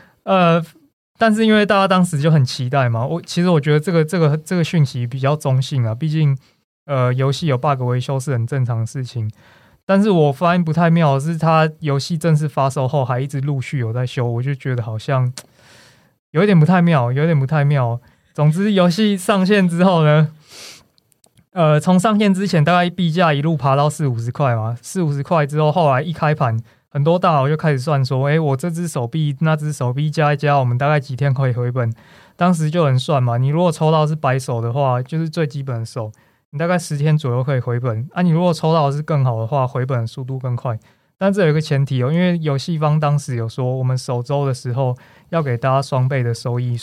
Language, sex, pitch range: Chinese, male, 130-165 Hz